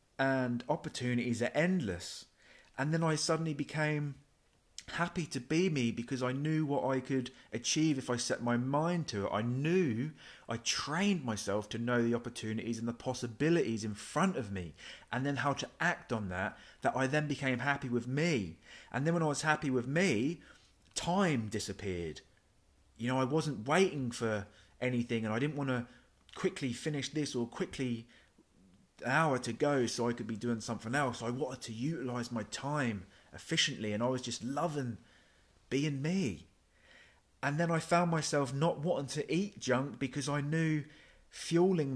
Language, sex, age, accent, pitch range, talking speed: English, male, 30-49, British, 115-150 Hz, 175 wpm